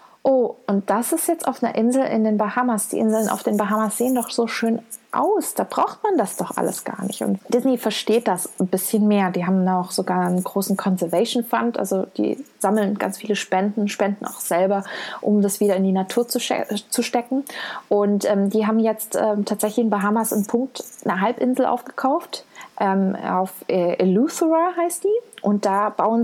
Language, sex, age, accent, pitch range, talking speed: German, female, 20-39, German, 195-235 Hz, 195 wpm